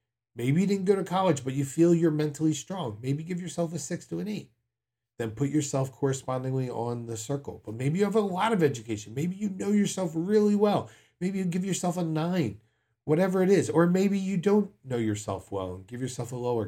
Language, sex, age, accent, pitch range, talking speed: English, male, 40-59, American, 110-145 Hz, 225 wpm